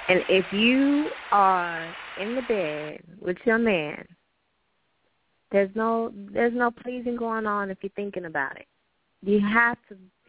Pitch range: 170-220 Hz